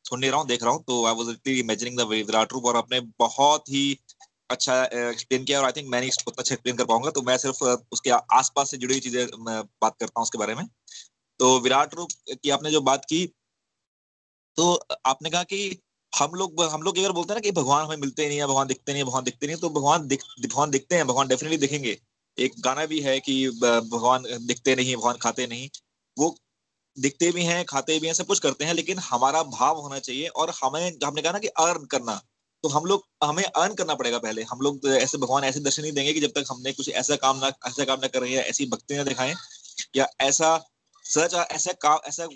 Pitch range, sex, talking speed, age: 125-160 Hz, male, 165 wpm, 20-39